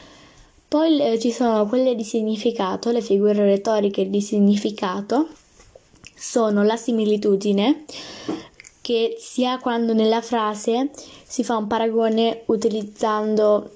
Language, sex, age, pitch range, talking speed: Italian, female, 10-29, 205-240 Hz, 105 wpm